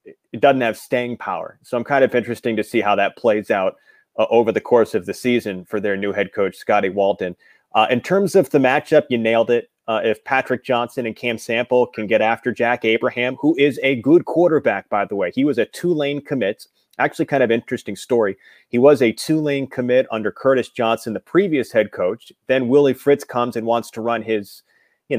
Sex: male